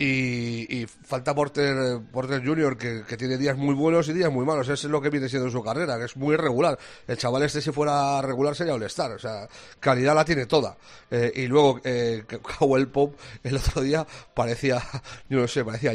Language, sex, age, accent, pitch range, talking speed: Spanish, male, 40-59, Spanish, 125-145 Hz, 205 wpm